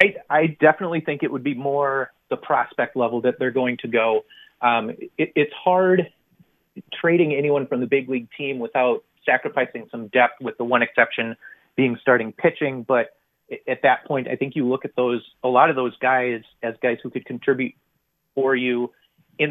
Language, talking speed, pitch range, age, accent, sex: English, 180 wpm, 120-155 Hz, 30-49, American, male